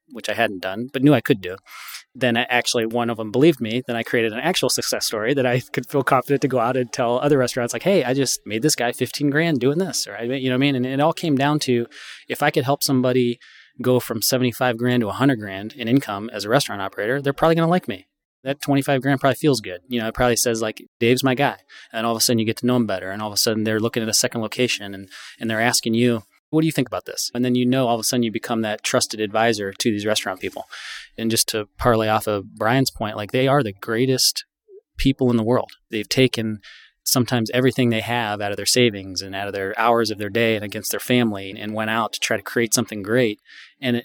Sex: male